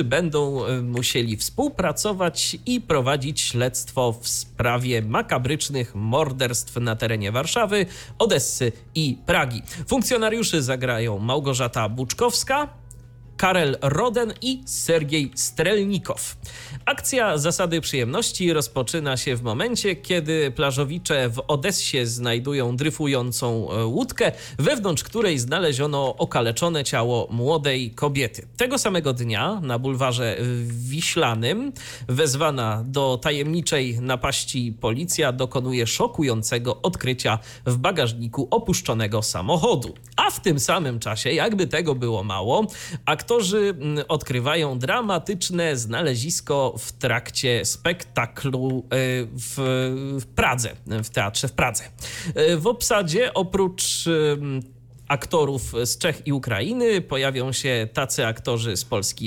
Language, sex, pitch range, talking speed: Polish, male, 120-165 Hz, 100 wpm